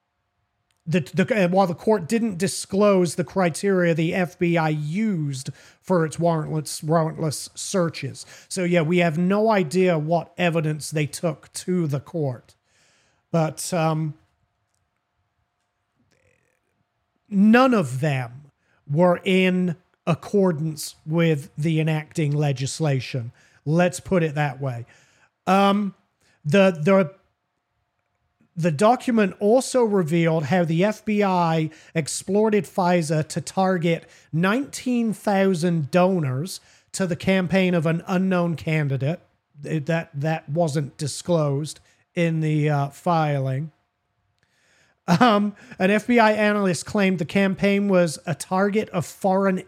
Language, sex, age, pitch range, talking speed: English, male, 40-59, 150-190 Hz, 110 wpm